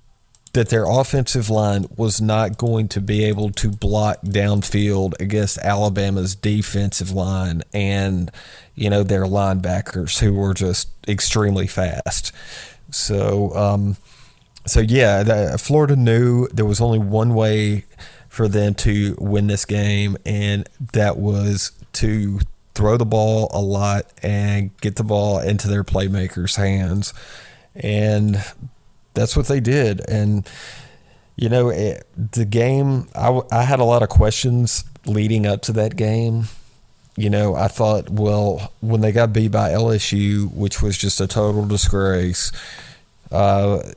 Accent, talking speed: American, 140 wpm